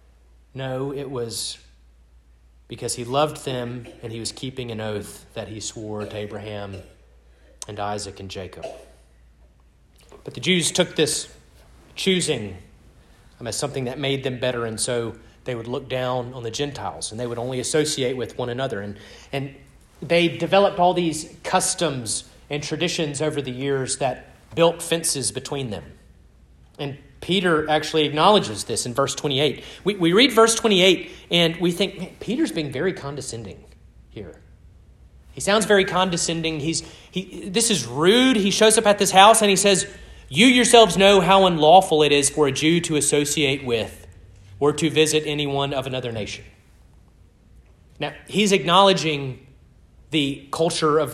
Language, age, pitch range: English, 30-49, 100-165 Hz